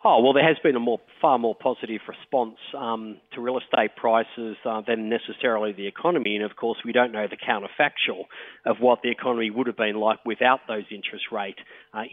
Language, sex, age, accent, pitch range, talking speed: English, male, 40-59, Australian, 110-125 Hz, 205 wpm